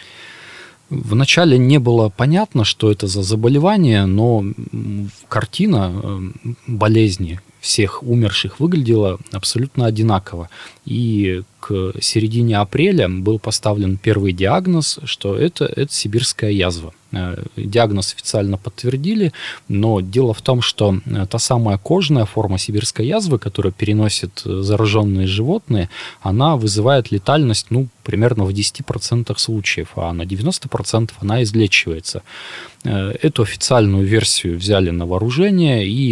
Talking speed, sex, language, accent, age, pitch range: 110 wpm, male, Russian, native, 20-39, 100-125 Hz